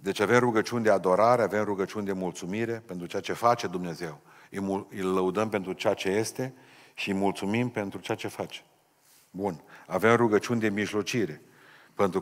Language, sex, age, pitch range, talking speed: Romanian, male, 50-69, 95-115 Hz, 170 wpm